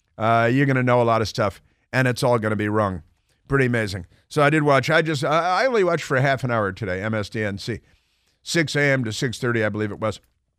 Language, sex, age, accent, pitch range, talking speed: English, male, 50-69, American, 110-150 Hz, 225 wpm